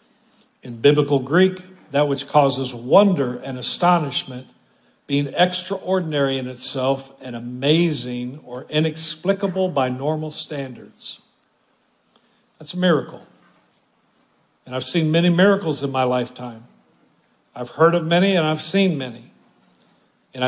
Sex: male